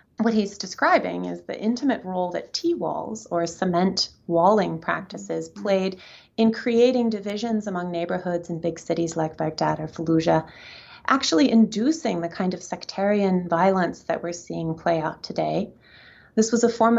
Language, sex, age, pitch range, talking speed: English, female, 30-49, 170-220 Hz, 150 wpm